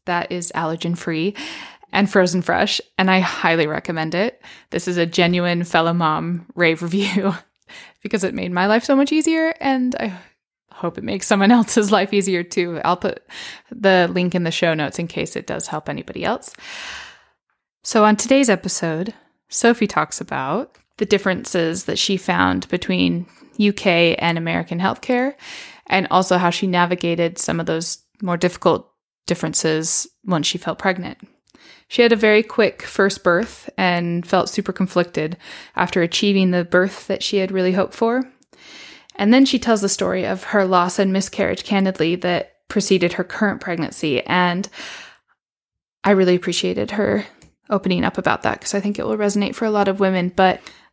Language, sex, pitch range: English, female, 175-205 Hz